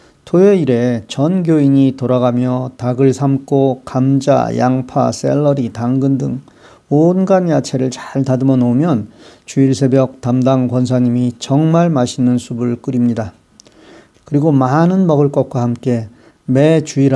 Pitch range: 125-155 Hz